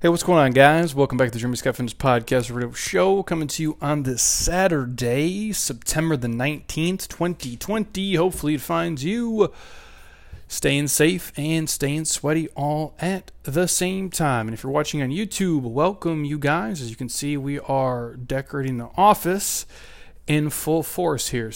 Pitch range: 120-160 Hz